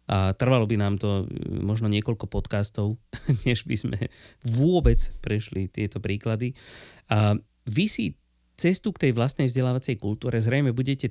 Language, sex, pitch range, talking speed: Slovak, male, 100-125 Hz, 140 wpm